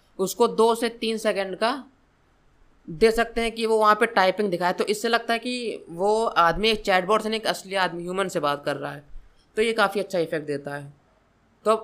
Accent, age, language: Indian, 20-39, English